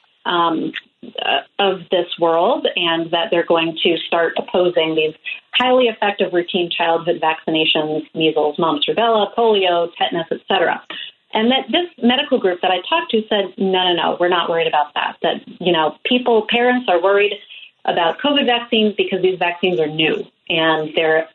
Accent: American